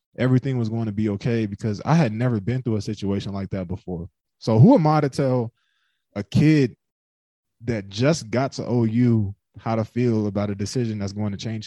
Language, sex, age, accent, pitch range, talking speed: English, male, 20-39, American, 100-120 Hz, 205 wpm